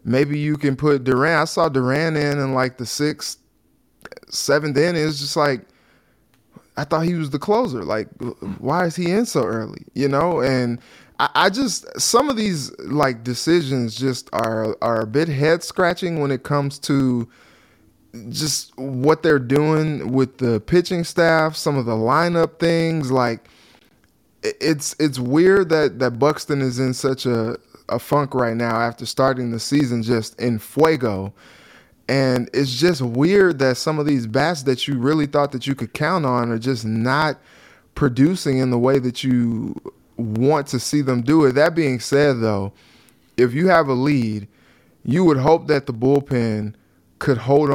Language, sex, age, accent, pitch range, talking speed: English, male, 20-39, American, 125-155 Hz, 175 wpm